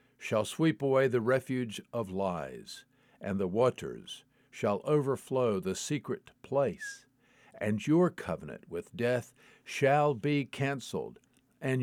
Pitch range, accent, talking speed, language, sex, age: 110-135 Hz, American, 120 wpm, English, male, 50-69